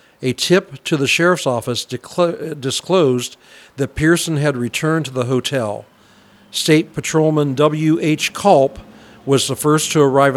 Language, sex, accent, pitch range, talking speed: English, male, American, 130-155 Hz, 135 wpm